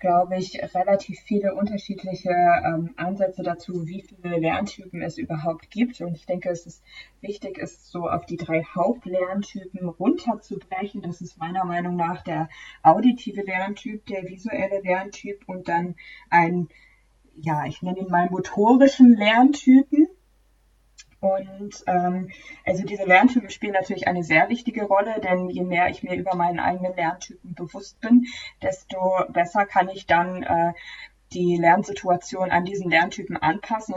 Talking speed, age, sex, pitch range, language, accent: 145 wpm, 20-39, female, 170-200 Hz, German, German